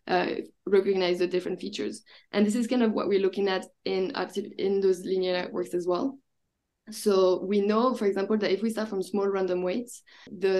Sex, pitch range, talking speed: female, 190-215 Hz, 200 wpm